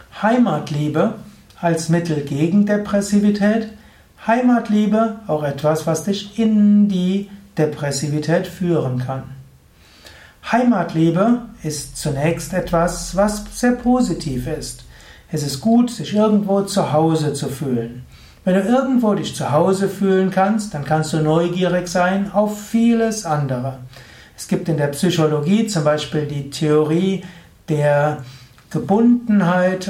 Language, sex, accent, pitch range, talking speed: German, male, German, 150-205 Hz, 120 wpm